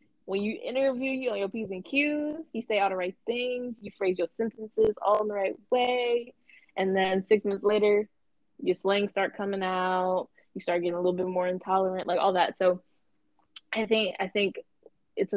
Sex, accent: female, American